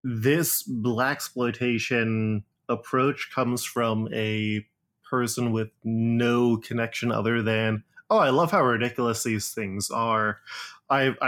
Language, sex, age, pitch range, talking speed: English, male, 20-39, 110-125 Hz, 115 wpm